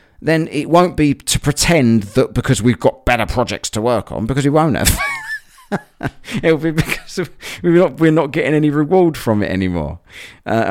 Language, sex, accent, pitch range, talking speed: English, male, British, 95-150 Hz, 175 wpm